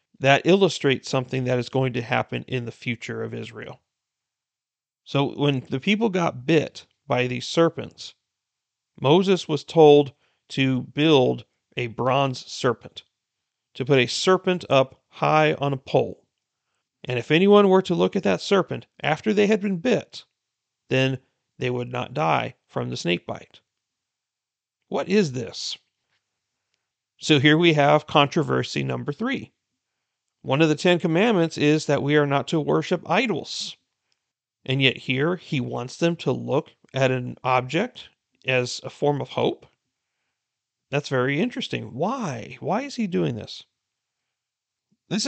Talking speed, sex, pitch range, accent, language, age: 145 wpm, male, 125-160 Hz, American, English, 40-59